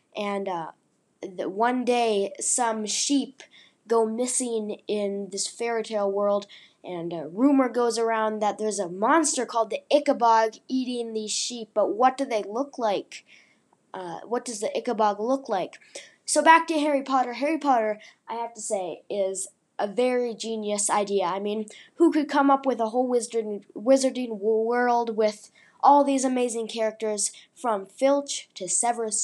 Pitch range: 210-255 Hz